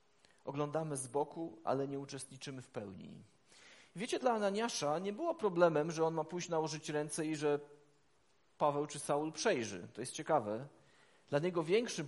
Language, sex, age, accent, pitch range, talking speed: Polish, male, 40-59, native, 145-180 Hz, 160 wpm